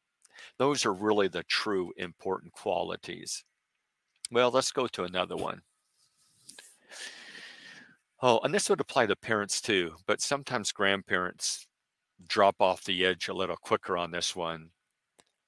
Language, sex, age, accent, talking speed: English, male, 50-69, American, 130 wpm